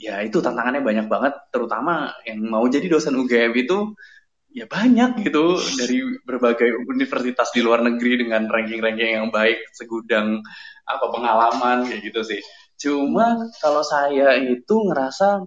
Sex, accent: male, native